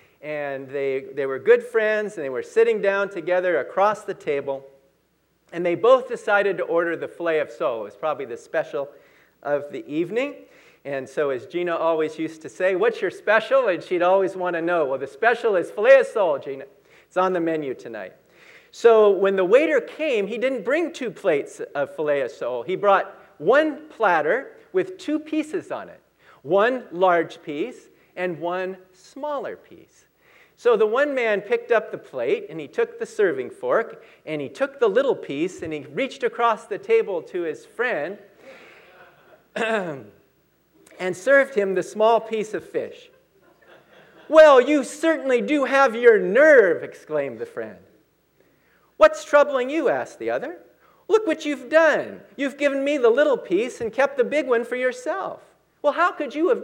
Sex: male